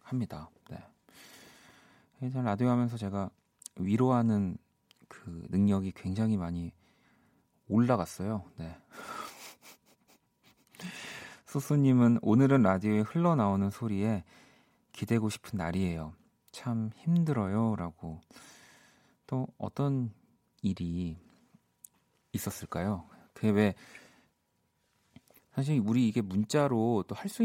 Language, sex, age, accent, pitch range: Korean, male, 40-59, native, 100-130 Hz